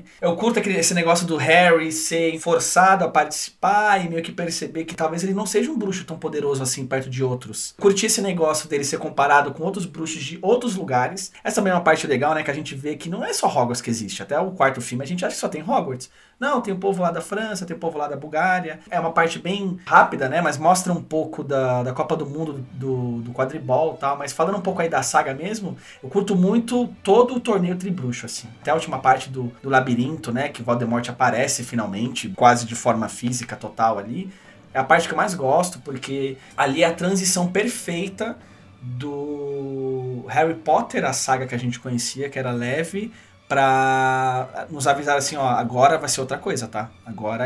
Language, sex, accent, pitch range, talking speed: Portuguese, male, Brazilian, 130-175 Hz, 215 wpm